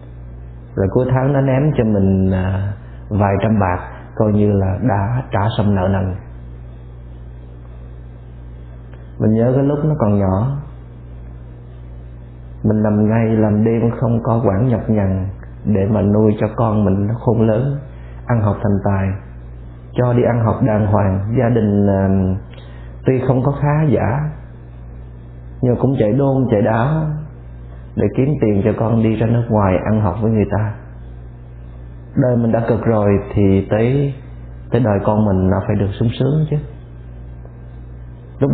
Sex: male